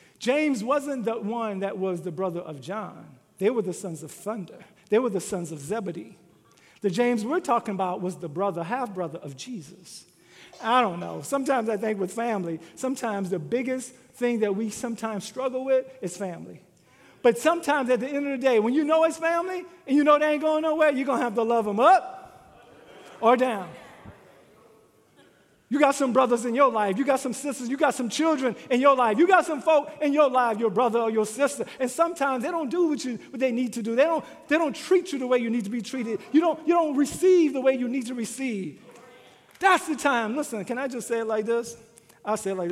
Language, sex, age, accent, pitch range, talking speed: English, male, 50-69, American, 195-275 Hz, 230 wpm